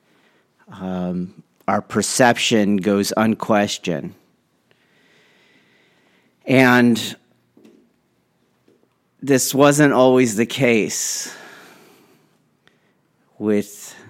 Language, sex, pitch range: English, male, 95-115 Hz